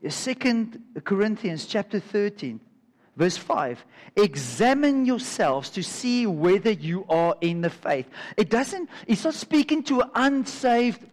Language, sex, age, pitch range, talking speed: English, male, 50-69, 185-260 Hz, 125 wpm